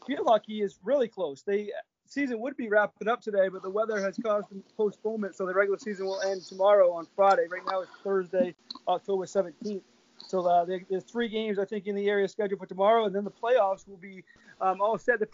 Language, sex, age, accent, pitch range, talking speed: English, male, 20-39, American, 185-220 Hz, 225 wpm